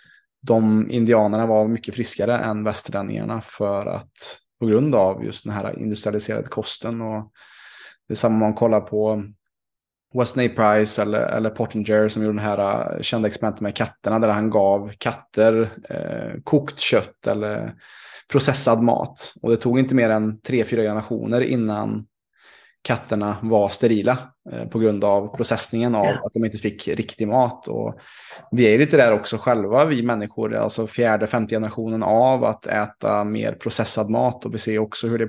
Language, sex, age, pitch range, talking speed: Swedish, male, 20-39, 105-115 Hz, 160 wpm